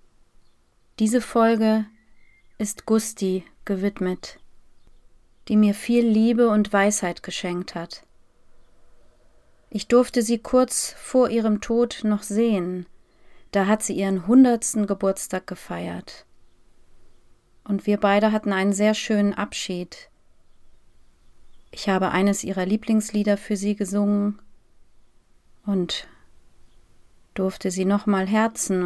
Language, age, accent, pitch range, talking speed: German, 30-49, German, 185-220 Hz, 105 wpm